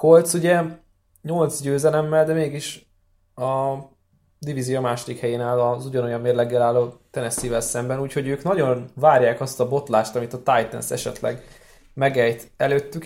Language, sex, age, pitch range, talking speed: Hungarian, male, 20-39, 120-140 Hz, 140 wpm